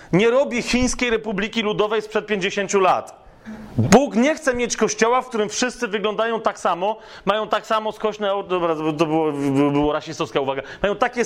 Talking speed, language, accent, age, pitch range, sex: 170 wpm, Polish, native, 30-49, 195-230 Hz, male